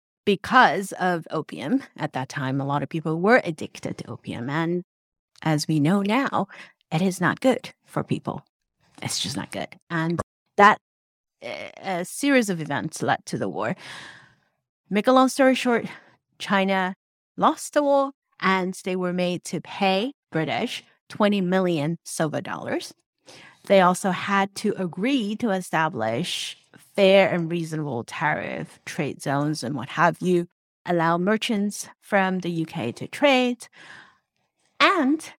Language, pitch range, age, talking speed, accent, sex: English, 165-215 Hz, 30-49, 140 wpm, American, female